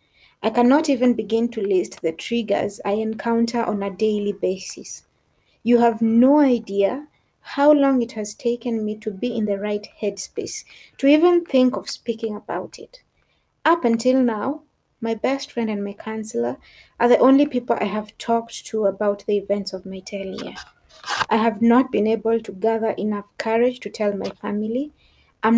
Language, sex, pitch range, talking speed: English, female, 205-245 Hz, 175 wpm